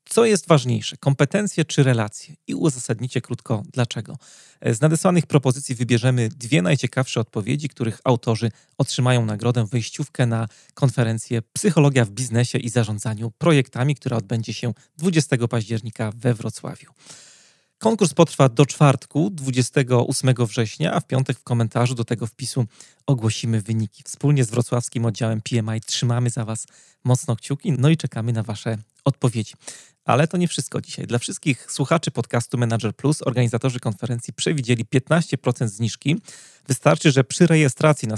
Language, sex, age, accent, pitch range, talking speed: Polish, male, 30-49, native, 115-145 Hz, 140 wpm